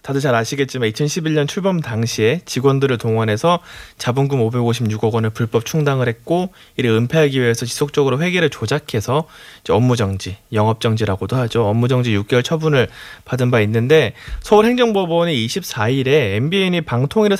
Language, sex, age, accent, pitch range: Korean, male, 30-49, native, 120-185 Hz